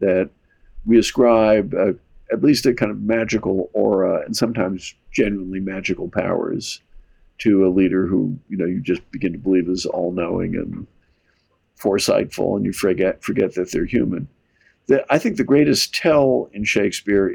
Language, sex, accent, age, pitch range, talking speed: English, male, American, 50-69, 90-110 Hz, 150 wpm